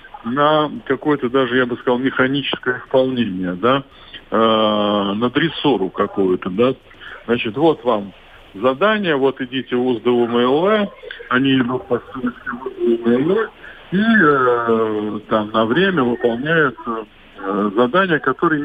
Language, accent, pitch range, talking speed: Russian, native, 110-145 Hz, 105 wpm